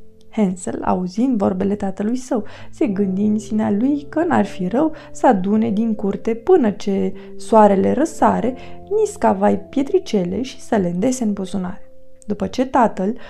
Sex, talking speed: female, 145 wpm